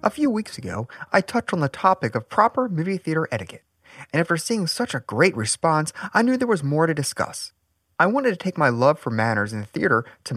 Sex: male